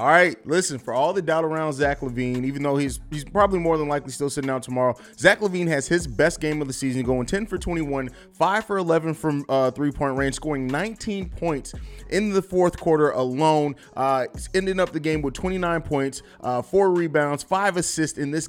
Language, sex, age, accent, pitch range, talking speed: English, male, 30-49, American, 145-185 Hz, 215 wpm